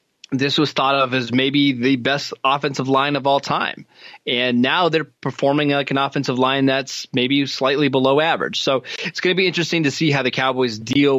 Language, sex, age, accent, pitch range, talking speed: English, male, 20-39, American, 125-145 Hz, 205 wpm